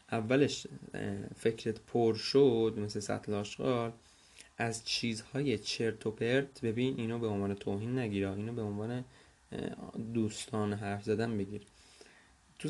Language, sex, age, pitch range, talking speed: Persian, male, 20-39, 105-135 Hz, 125 wpm